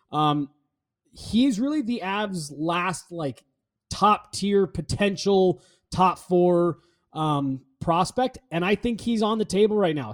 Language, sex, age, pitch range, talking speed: English, male, 20-39, 155-200 Hz, 135 wpm